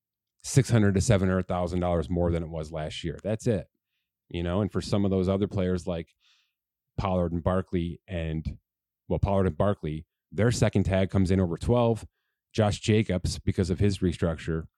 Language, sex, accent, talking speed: English, male, American, 170 wpm